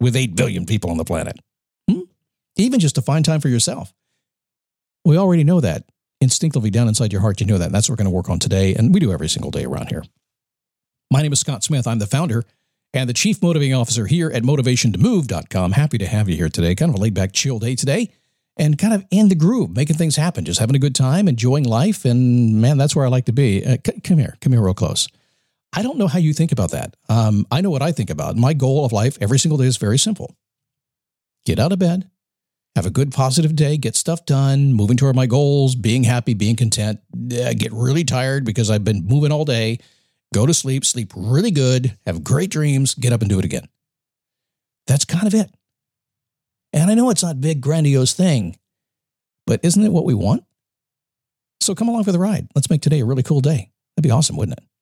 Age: 50-69